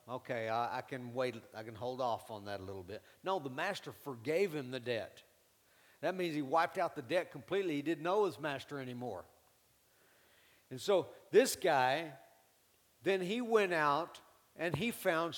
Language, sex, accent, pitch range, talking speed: English, male, American, 135-175 Hz, 170 wpm